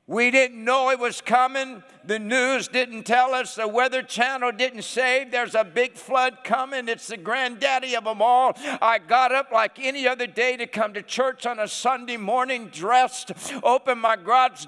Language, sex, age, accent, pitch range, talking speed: English, male, 60-79, American, 240-295 Hz, 190 wpm